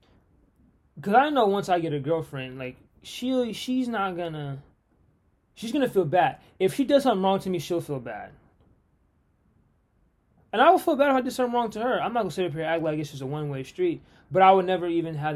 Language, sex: English, male